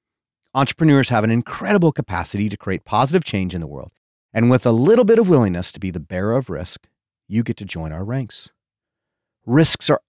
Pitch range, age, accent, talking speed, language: 95-140 Hz, 40-59, American, 195 wpm, English